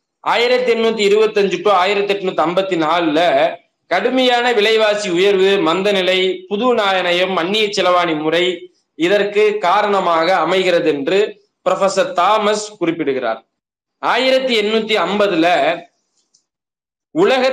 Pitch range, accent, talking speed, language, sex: 165-210 Hz, native, 80 wpm, Tamil, male